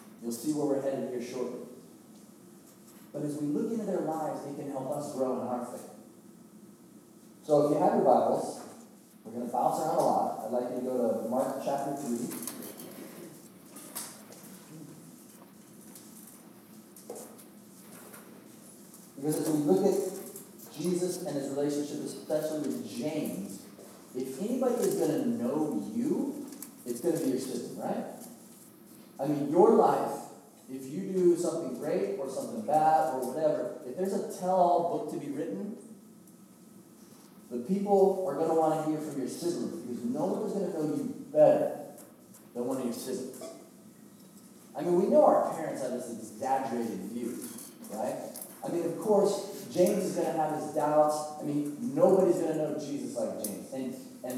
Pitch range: 145-195 Hz